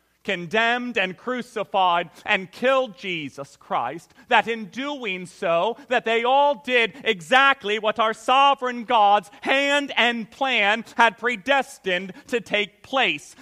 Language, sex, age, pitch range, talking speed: English, male, 40-59, 225-295 Hz, 125 wpm